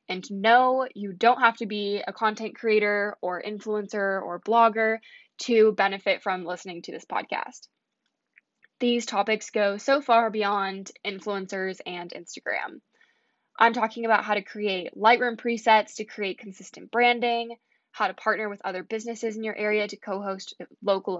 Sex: female